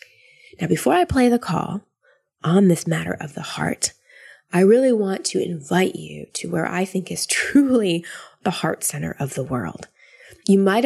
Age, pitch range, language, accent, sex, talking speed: 20-39, 165-200 Hz, English, American, female, 175 wpm